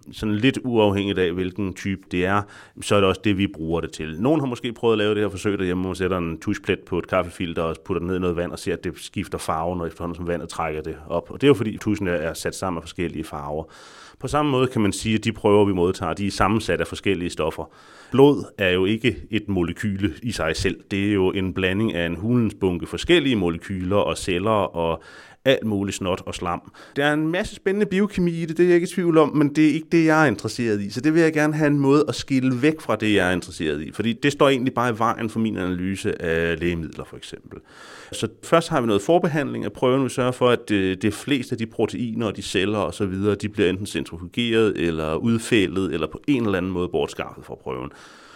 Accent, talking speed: native, 250 wpm